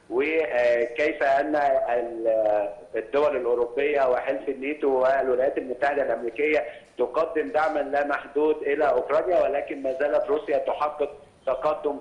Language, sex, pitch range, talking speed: Arabic, male, 130-160 Hz, 105 wpm